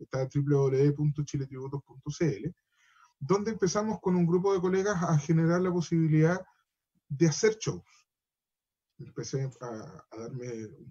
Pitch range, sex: 145-175 Hz, male